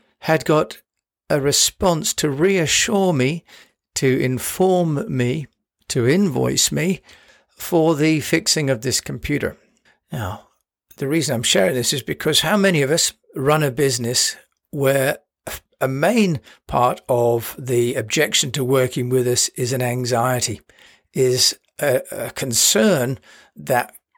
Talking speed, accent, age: 130 wpm, British, 50-69